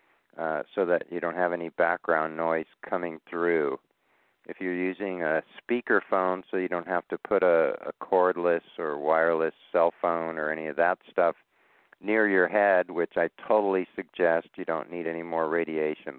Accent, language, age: American, English, 50-69